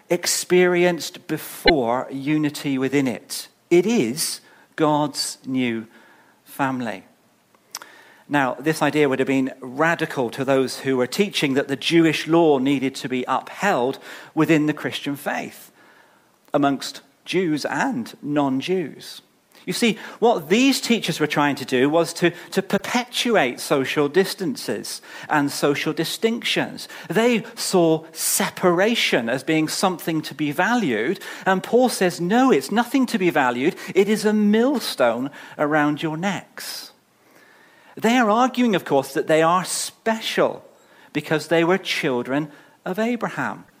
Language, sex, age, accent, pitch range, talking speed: English, male, 40-59, British, 145-205 Hz, 130 wpm